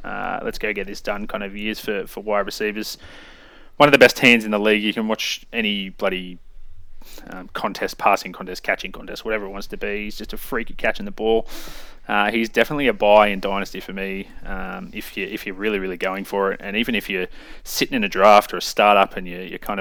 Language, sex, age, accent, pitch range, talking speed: English, male, 20-39, Australian, 95-105 Hz, 240 wpm